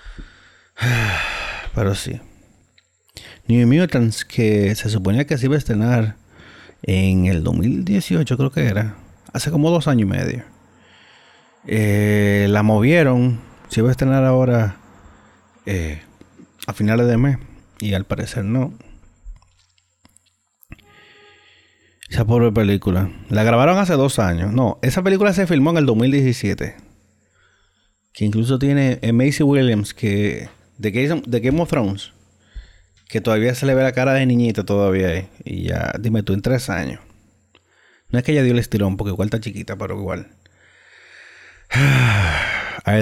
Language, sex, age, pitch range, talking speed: Spanish, male, 30-49, 95-125 Hz, 140 wpm